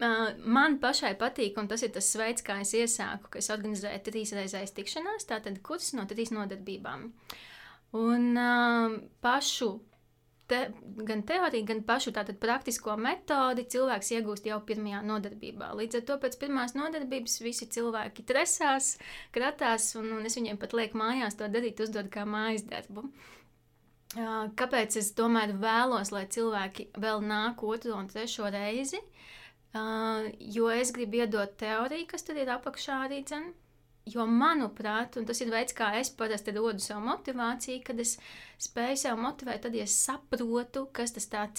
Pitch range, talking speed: 215-245 Hz, 155 wpm